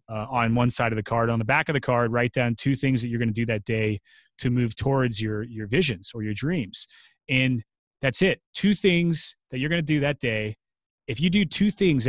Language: English